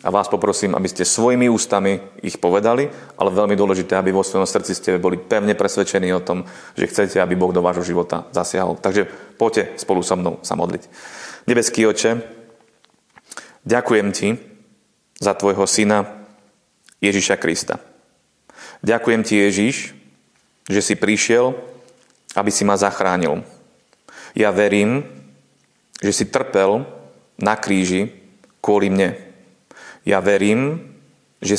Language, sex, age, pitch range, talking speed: Slovak, male, 30-49, 95-110 Hz, 130 wpm